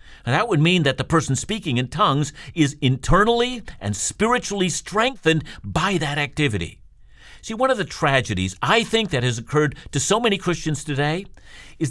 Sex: male